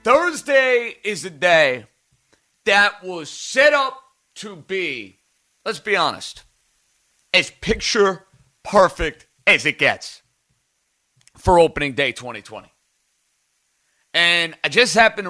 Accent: American